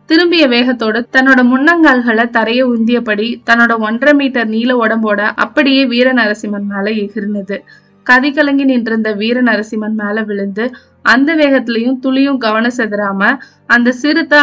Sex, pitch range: female, 215-255 Hz